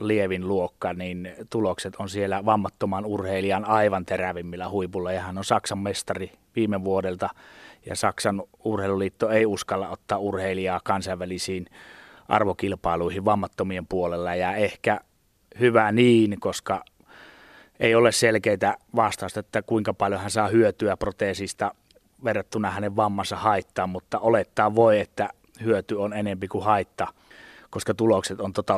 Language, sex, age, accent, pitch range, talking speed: Finnish, male, 30-49, native, 95-110 Hz, 130 wpm